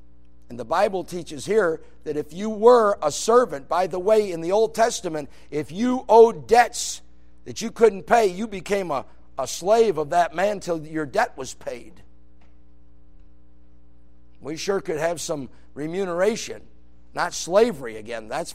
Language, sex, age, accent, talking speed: English, male, 50-69, American, 160 wpm